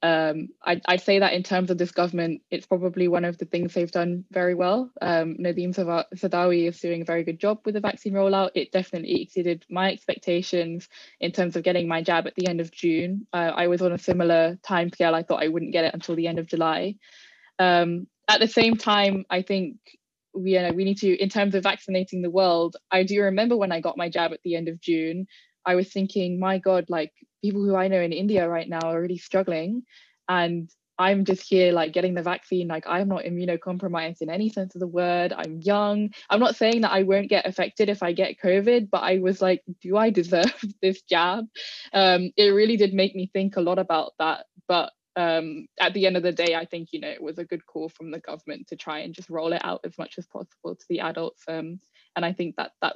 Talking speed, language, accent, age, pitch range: 235 wpm, English, British, 10-29, 170-195 Hz